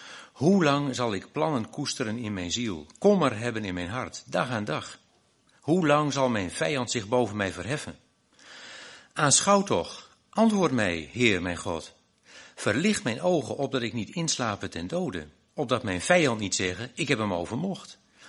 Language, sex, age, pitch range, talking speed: Dutch, male, 60-79, 100-145 Hz, 165 wpm